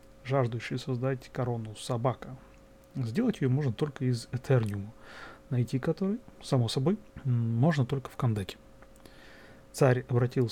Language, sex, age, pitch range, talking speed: Russian, male, 30-49, 120-145 Hz, 115 wpm